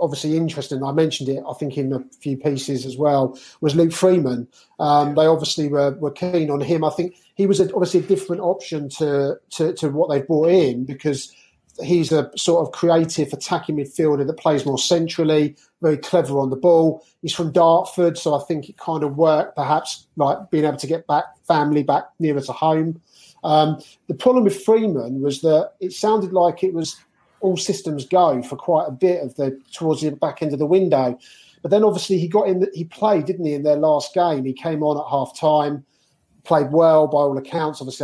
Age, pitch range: 40-59, 145-170 Hz